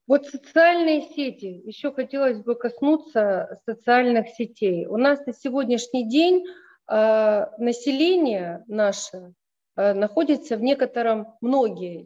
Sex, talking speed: female, 110 wpm